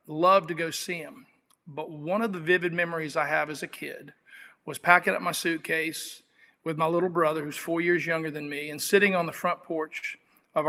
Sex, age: male, 40-59